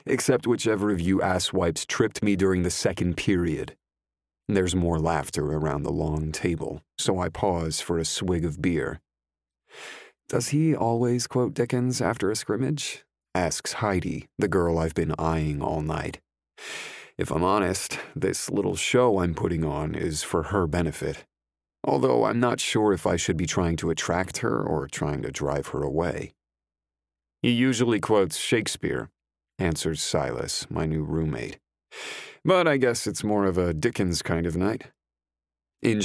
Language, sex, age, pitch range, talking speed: English, male, 40-59, 80-120 Hz, 160 wpm